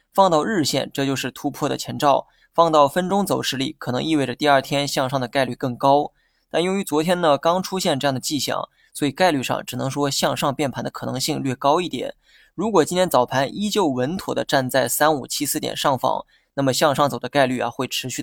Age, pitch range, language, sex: 20-39, 135-160 Hz, Chinese, male